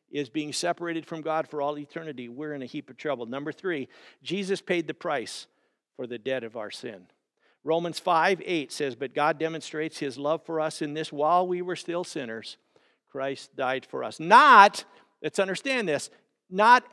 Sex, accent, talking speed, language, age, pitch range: male, American, 190 wpm, English, 50-69, 140-170 Hz